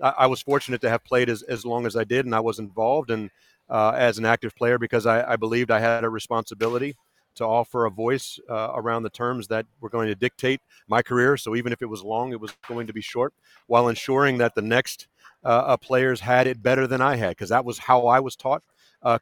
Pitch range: 115-130 Hz